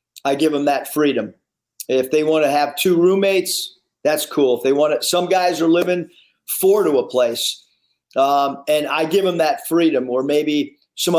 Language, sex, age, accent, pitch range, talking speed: English, male, 40-59, American, 150-185 Hz, 195 wpm